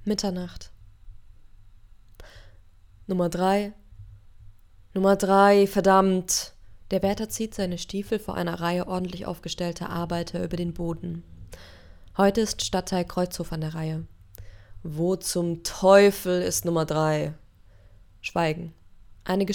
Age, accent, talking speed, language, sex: 20-39, German, 105 wpm, German, female